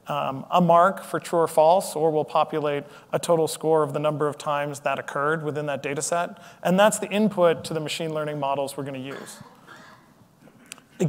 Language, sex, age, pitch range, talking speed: English, male, 30-49, 150-175 Hz, 205 wpm